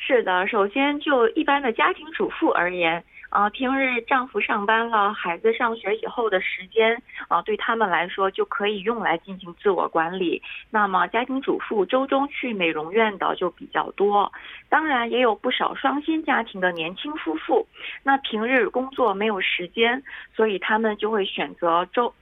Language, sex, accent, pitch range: Korean, female, Chinese, 195-250 Hz